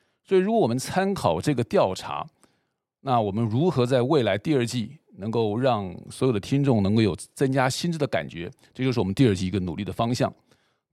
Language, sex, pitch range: Chinese, male, 100-125 Hz